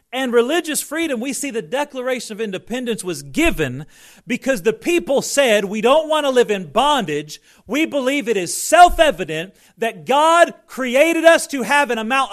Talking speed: 170 wpm